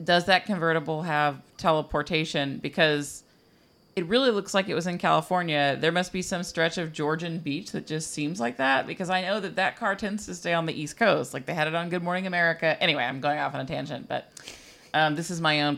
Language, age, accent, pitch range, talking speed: English, 30-49, American, 150-185 Hz, 230 wpm